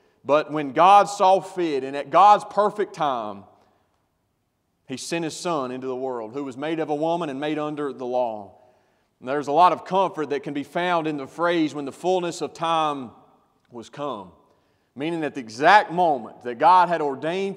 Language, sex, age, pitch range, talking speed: English, male, 30-49, 135-175 Hz, 195 wpm